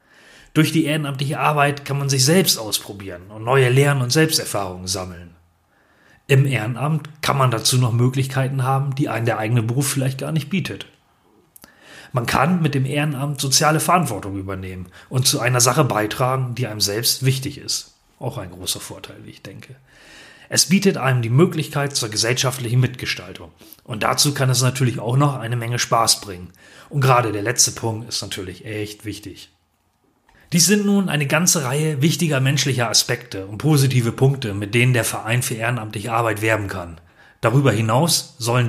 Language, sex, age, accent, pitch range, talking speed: German, male, 30-49, German, 110-140 Hz, 170 wpm